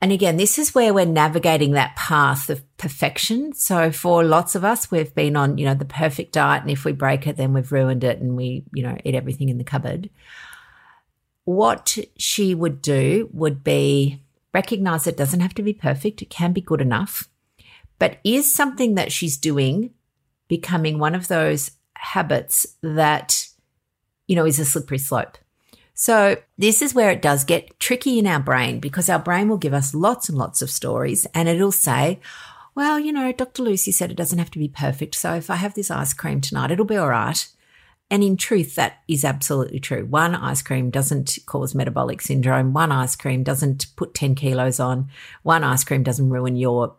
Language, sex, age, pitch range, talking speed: English, female, 50-69, 135-190 Hz, 200 wpm